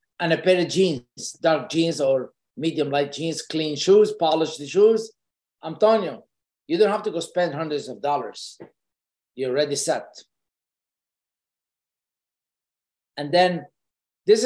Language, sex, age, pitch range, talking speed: English, male, 50-69, 145-190 Hz, 135 wpm